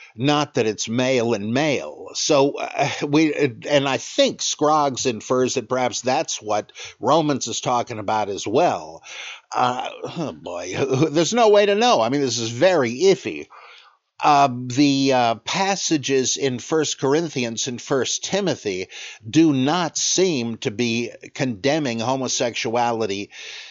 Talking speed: 140 wpm